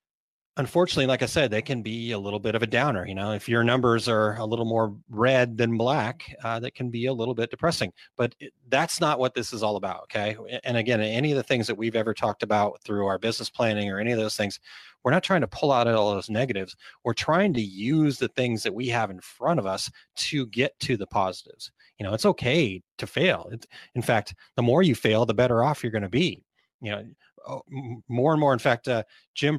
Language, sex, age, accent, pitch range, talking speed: English, male, 30-49, American, 105-130 Hz, 235 wpm